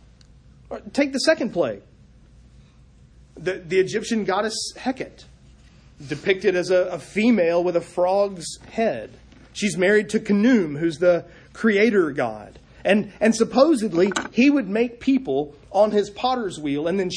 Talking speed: 135 wpm